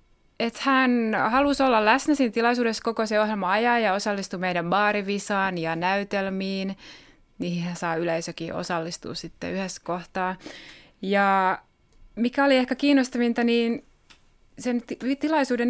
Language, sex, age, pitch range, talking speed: Finnish, female, 20-39, 185-240 Hz, 125 wpm